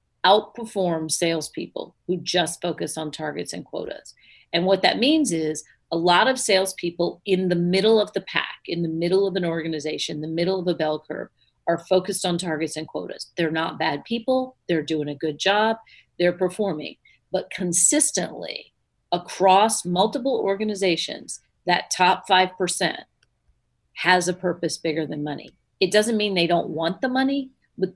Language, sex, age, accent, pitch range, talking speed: English, female, 40-59, American, 160-195 Hz, 165 wpm